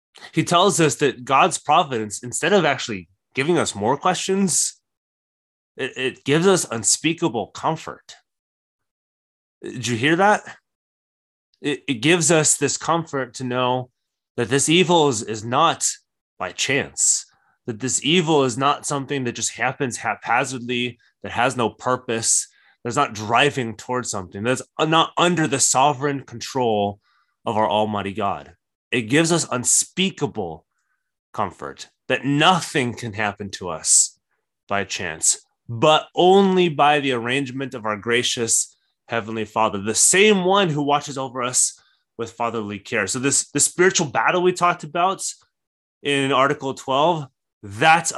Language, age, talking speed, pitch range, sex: English, 20-39, 140 wpm, 115-150 Hz, male